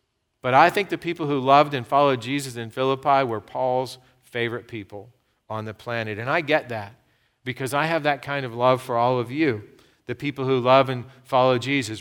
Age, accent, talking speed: 50-69, American, 205 wpm